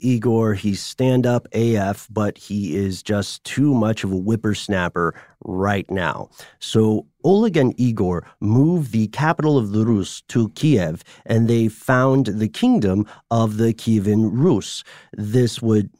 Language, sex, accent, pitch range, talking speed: English, male, American, 100-125 Hz, 145 wpm